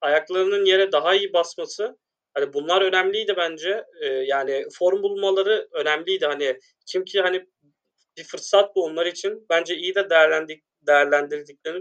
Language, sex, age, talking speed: Turkish, male, 30-49, 135 wpm